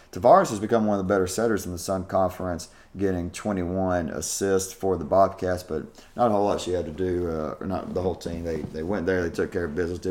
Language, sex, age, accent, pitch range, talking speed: English, male, 30-49, American, 85-105 Hz, 255 wpm